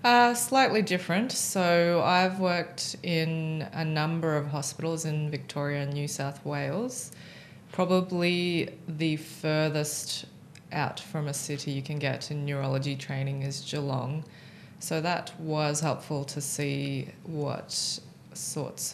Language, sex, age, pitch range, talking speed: English, female, 20-39, 140-160 Hz, 125 wpm